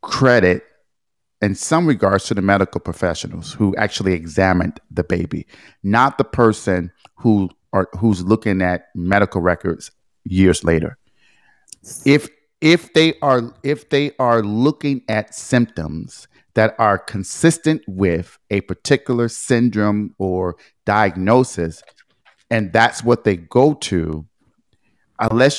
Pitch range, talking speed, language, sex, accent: 95-130 Hz, 120 wpm, English, male, American